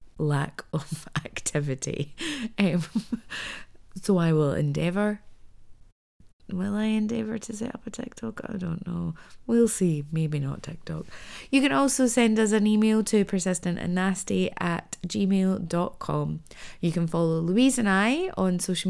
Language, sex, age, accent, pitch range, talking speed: English, female, 30-49, British, 160-215 Hz, 135 wpm